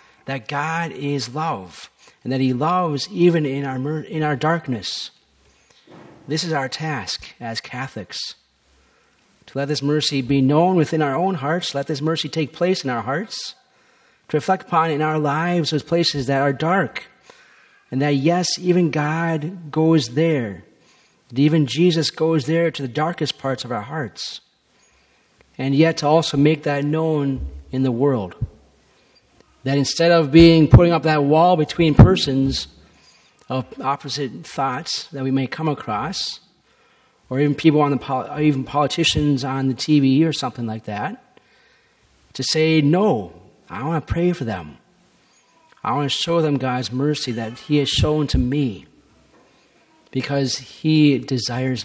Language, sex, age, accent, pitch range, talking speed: English, male, 40-59, American, 130-160 Hz, 160 wpm